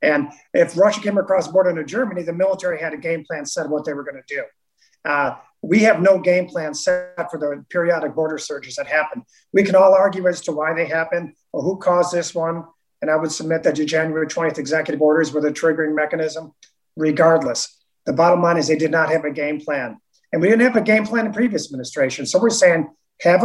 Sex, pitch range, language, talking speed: male, 160-195 Hz, English, 230 wpm